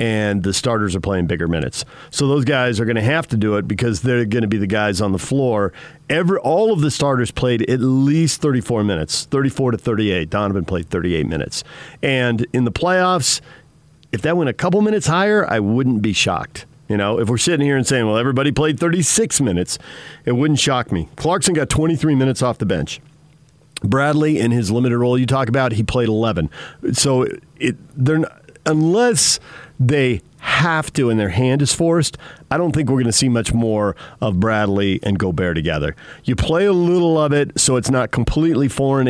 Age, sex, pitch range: 50-69, male, 110-150 Hz